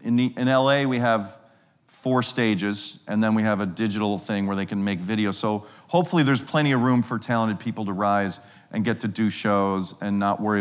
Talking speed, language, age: 220 wpm, English, 40-59